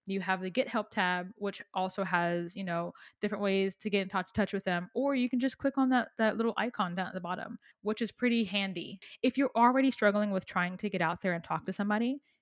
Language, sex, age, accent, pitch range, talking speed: English, female, 10-29, American, 185-235 Hz, 245 wpm